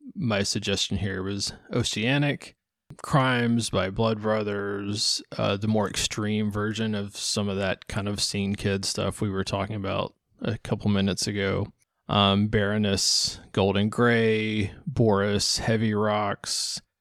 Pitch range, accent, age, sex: 100-115 Hz, American, 20-39, male